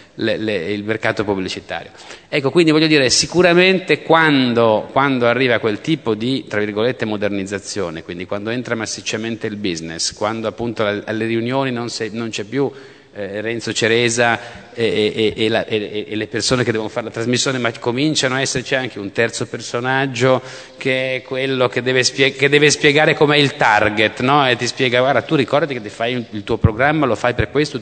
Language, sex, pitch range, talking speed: Italian, male, 105-135 Hz, 190 wpm